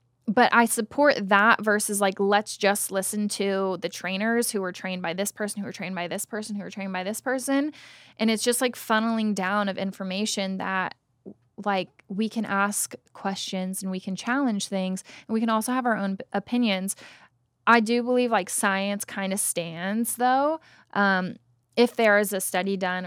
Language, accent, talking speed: English, American, 190 wpm